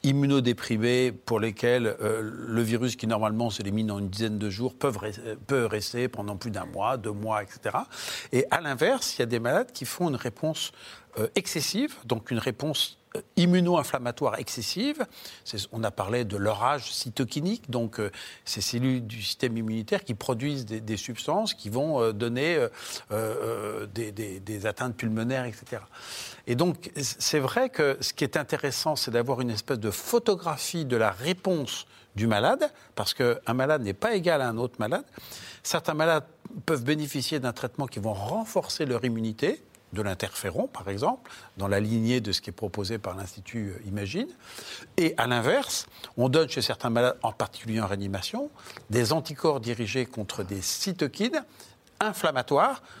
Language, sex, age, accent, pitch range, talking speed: French, male, 50-69, French, 110-150 Hz, 170 wpm